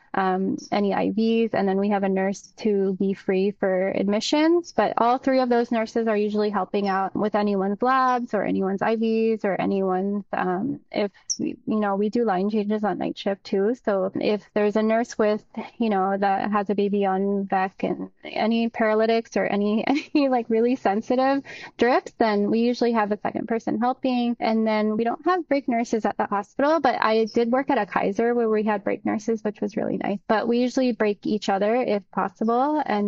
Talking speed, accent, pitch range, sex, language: 200 wpm, American, 200-240 Hz, female, English